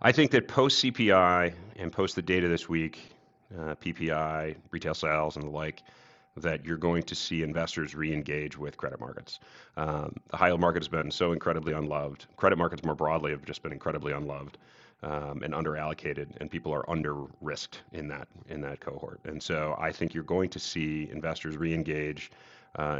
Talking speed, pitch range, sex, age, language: 185 wpm, 75-85 Hz, male, 40-59, English